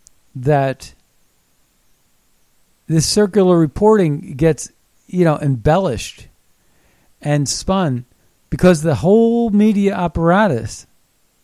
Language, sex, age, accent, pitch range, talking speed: English, male, 50-69, American, 130-185 Hz, 80 wpm